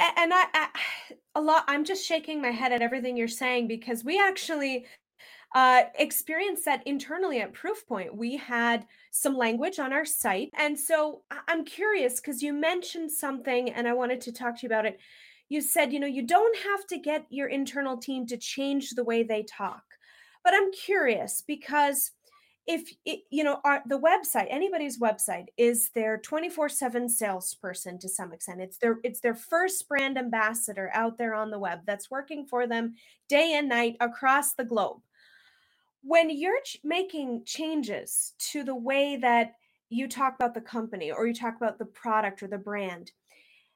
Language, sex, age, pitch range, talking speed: English, female, 30-49, 230-305 Hz, 175 wpm